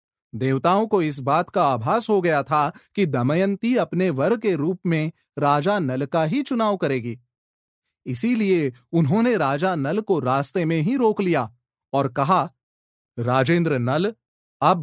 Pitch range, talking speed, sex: 135-195 Hz, 150 wpm, male